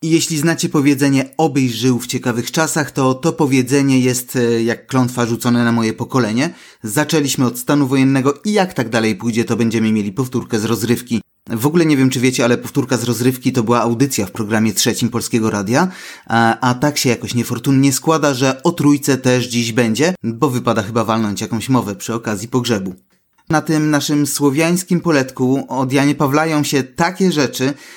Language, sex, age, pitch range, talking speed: Polish, male, 30-49, 120-145 Hz, 180 wpm